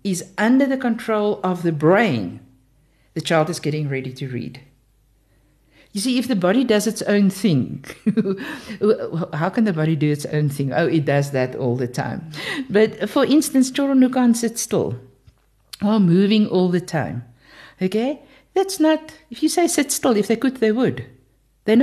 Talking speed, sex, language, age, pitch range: 180 wpm, female, English, 60-79, 155-245 Hz